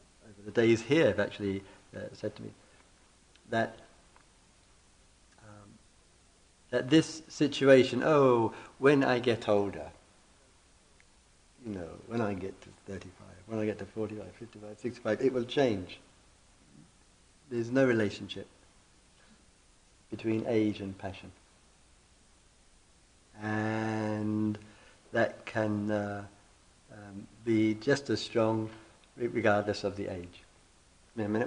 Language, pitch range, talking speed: English, 95-115 Hz, 110 wpm